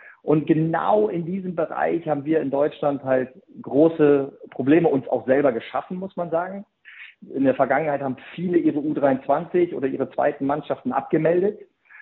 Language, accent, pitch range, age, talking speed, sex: German, German, 135-165 Hz, 40-59, 155 wpm, male